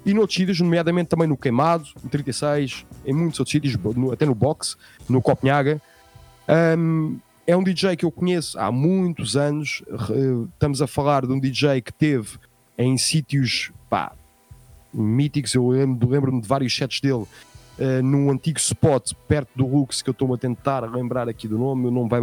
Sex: male